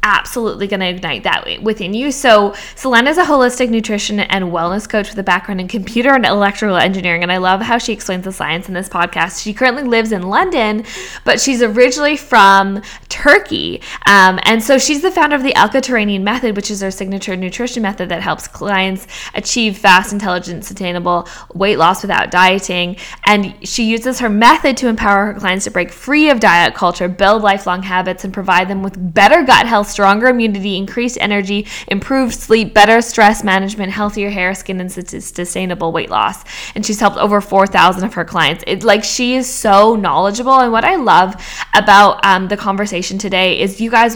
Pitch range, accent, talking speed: 185-225 Hz, American, 190 wpm